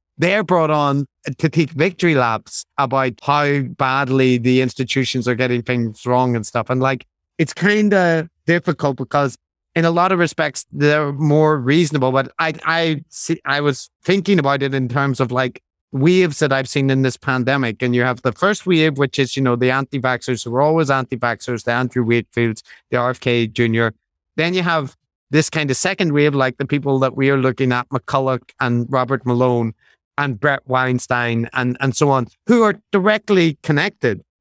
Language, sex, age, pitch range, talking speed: English, male, 30-49, 125-155 Hz, 185 wpm